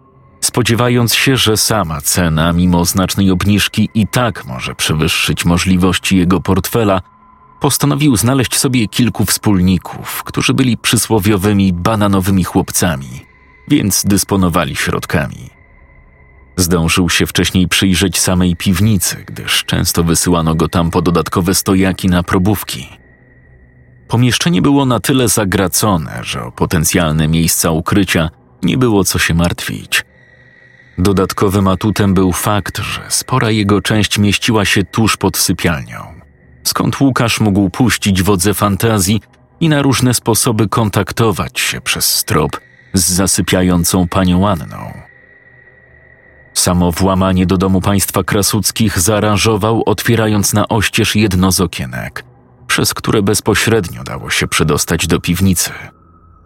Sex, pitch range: male, 90-110 Hz